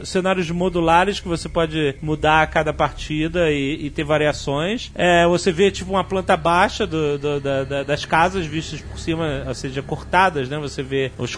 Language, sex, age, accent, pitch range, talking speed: Portuguese, male, 30-49, Brazilian, 160-220 Hz, 190 wpm